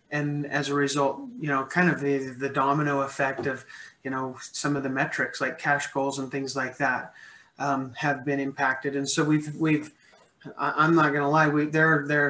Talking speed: 205 wpm